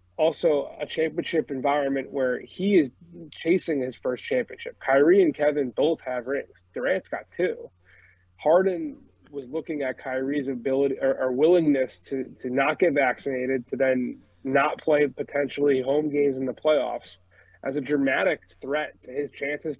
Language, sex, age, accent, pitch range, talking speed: English, male, 20-39, American, 125-145 Hz, 155 wpm